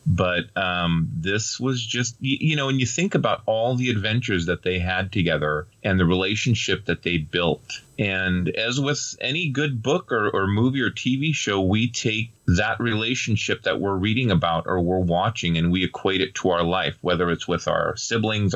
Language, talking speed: English, 190 wpm